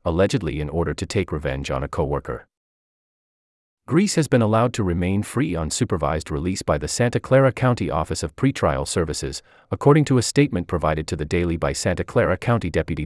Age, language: 30-49, English